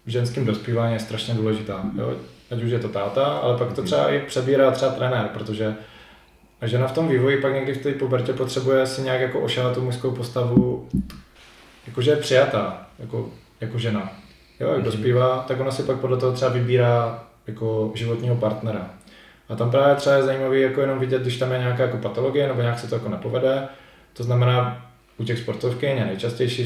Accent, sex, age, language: native, male, 20-39, Czech